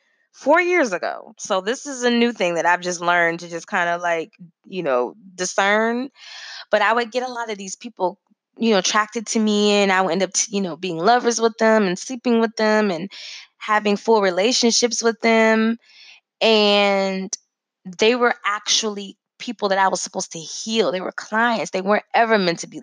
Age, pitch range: 20-39, 190-235 Hz